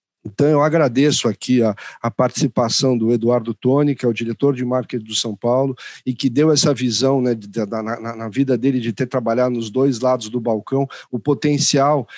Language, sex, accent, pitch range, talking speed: Portuguese, male, Brazilian, 125-150 Hz, 205 wpm